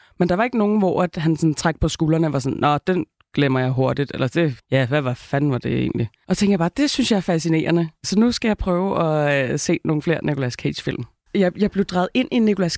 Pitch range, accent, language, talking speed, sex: 145-195 Hz, native, Danish, 260 wpm, female